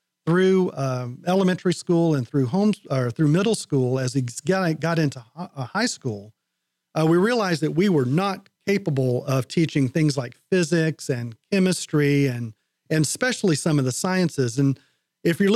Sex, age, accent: male, 40-59, American